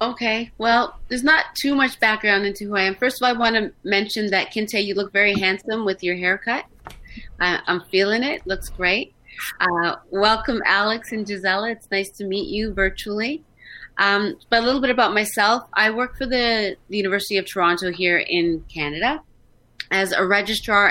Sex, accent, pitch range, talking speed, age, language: female, American, 175-215 Hz, 185 wpm, 30-49, English